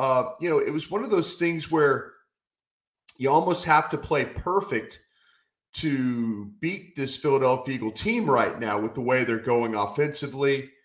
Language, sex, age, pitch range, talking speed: English, male, 40-59, 120-145 Hz, 165 wpm